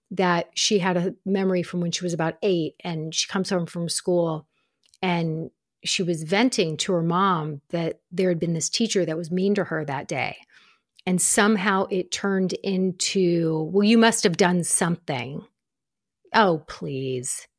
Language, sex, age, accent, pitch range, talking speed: English, female, 40-59, American, 175-215 Hz, 170 wpm